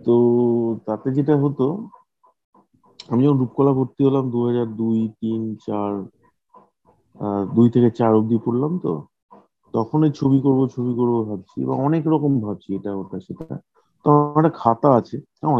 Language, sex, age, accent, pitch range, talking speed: Bengali, male, 50-69, native, 110-145 Hz, 85 wpm